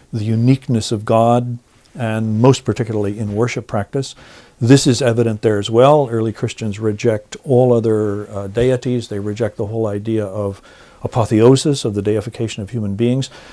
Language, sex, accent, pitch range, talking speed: English, male, American, 105-125 Hz, 160 wpm